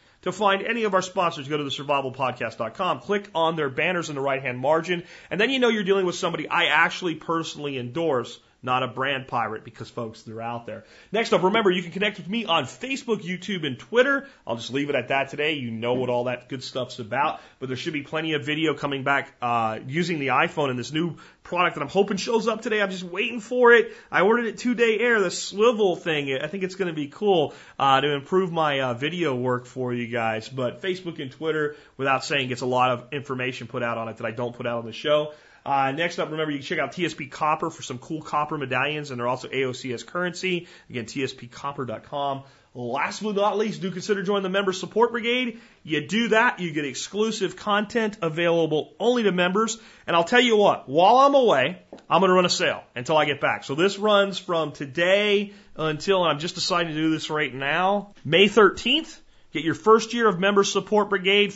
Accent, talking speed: American, 225 wpm